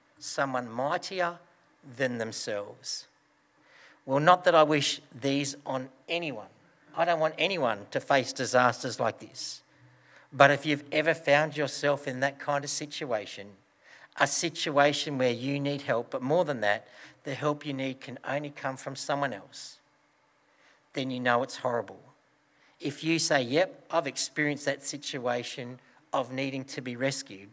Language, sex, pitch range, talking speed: English, male, 125-150 Hz, 155 wpm